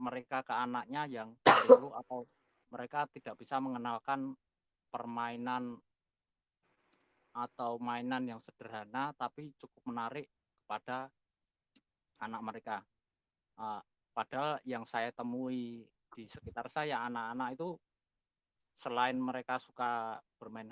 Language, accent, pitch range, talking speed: Indonesian, native, 115-130 Hz, 100 wpm